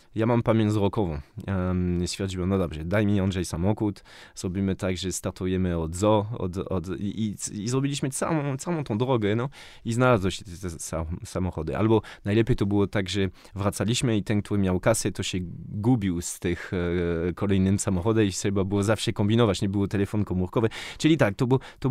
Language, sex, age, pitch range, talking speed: Polish, male, 20-39, 90-105 Hz, 180 wpm